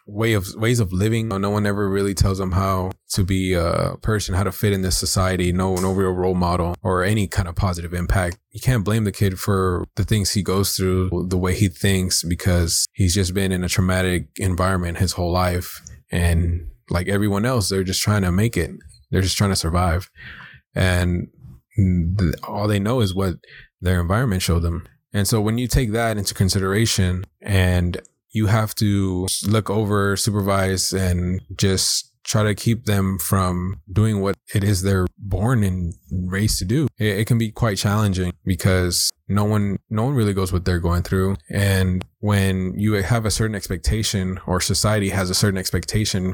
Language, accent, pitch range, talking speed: English, American, 90-105 Hz, 190 wpm